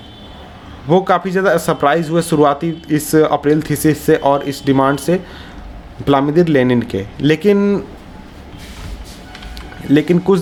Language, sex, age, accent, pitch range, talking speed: English, male, 30-49, Indian, 135-165 Hz, 115 wpm